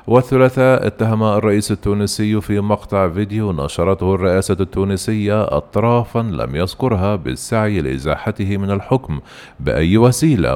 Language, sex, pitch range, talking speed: Arabic, male, 90-115 Hz, 110 wpm